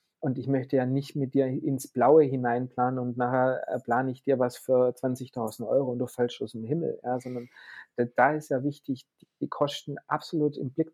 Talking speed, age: 195 wpm, 40-59